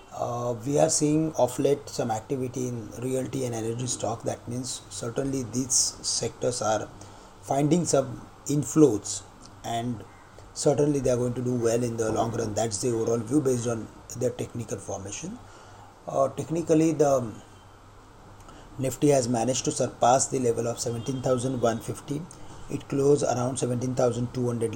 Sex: male